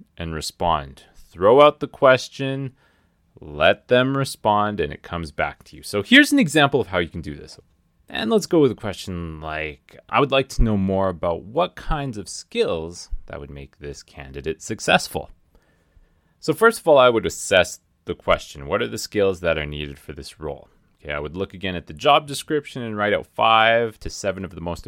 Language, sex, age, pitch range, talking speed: English, male, 30-49, 80-105 Hz, 205 wpm